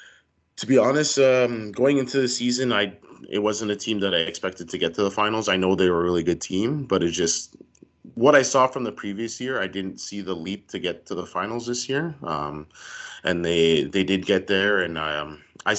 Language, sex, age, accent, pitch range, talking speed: English, male, 30-49, American, 80-105 Hz, 230 wpm